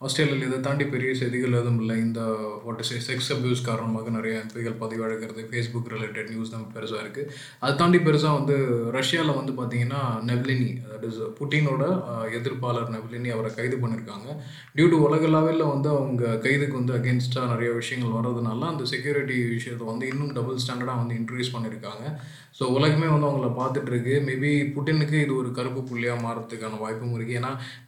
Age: 20-39